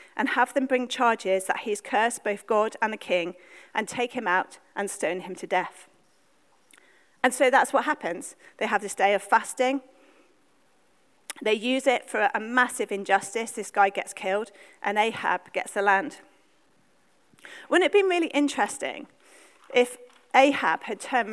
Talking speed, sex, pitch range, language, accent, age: 165 wpm, female, 200-260 Hz, English, British, 40-59